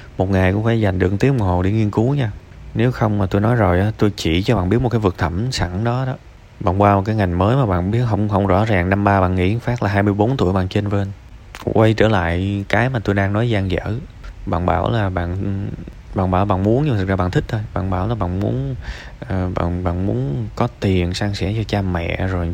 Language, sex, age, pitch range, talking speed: Vietnamese, male, 20-39, 95-120 Hz, 255 wpm